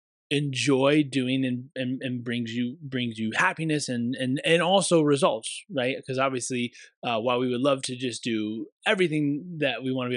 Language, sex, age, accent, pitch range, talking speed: English, male, 20-39, American, 135-175 Hz, 185 wpm